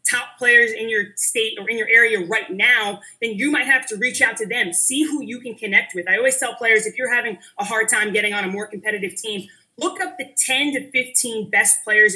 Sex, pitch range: female, 215-300 Hz